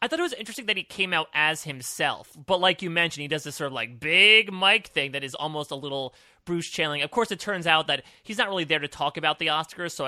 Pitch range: 140-175 Hz